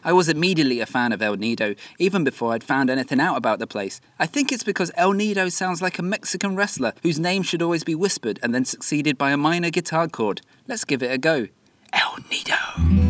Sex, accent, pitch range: male, British, 125-180 Hz